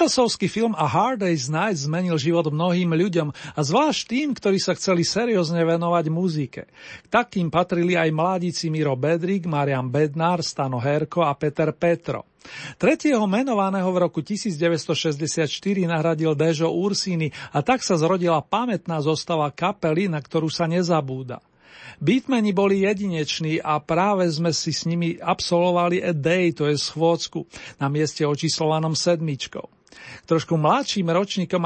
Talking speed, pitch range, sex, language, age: 140 wpm, 155-185 Hz, male, Slovak, 40-59